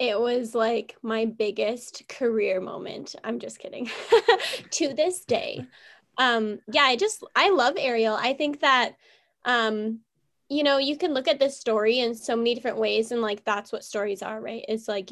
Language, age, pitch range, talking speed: English, 10-29, 210-245 Hz, 185 wpm